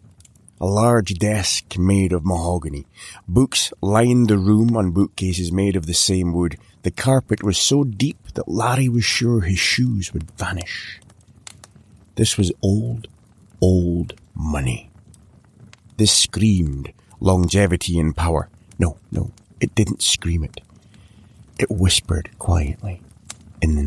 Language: English